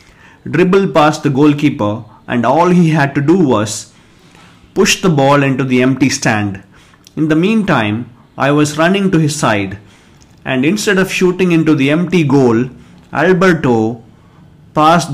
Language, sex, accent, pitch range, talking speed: English, male, Indian, 120-155 Hz, 145 wpm